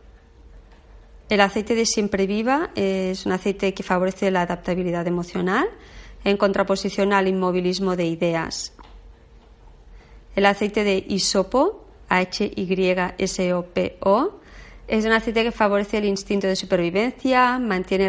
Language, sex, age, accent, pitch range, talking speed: Spanish, female, 30-49, Spanish, 185-220 Hz, 125 wpm